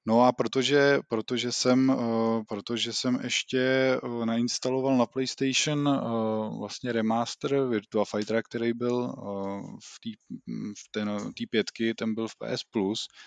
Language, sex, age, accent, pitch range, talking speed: Czech, male, 20-39, native, 105-120 Hz, 120 wpm